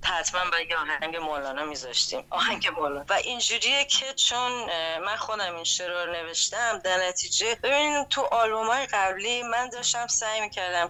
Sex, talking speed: female, 155 wpm